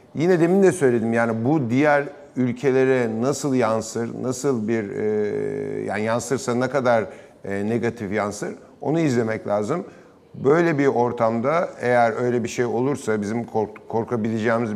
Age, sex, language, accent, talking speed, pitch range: 50-69, male, Turkish, native, 140 wpm, 115-135 Hz